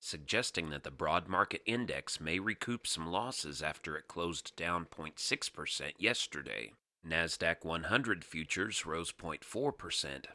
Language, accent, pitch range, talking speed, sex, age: English, American, 85-105 Hz, 120 wpm, male, 40-59